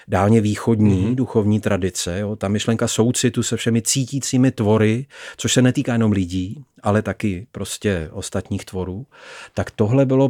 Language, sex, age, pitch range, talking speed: Czech, male, 40-59, 105-130 Hz, 145 wpm